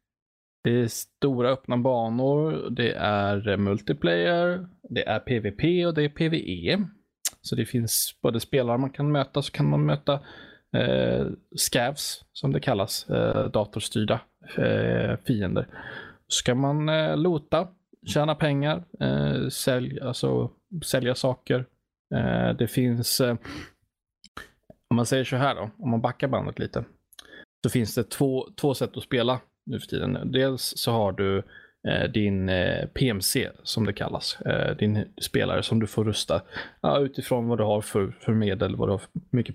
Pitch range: 105-140 Hz